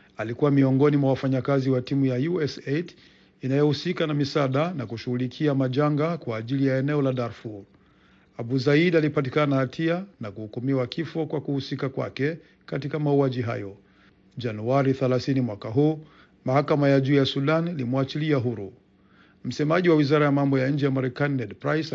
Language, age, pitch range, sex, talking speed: Swahili, 50-69, 130-150 Hz, male, 155 wpm